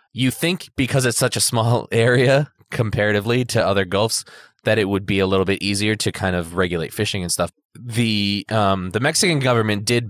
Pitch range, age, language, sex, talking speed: 90-115 Hz, 20-39, English, male, 195 wpm